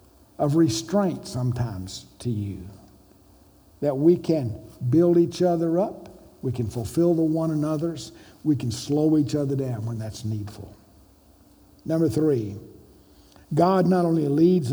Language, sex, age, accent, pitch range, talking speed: English, male, 60-79, American, 110-175 Hz, 135 wpm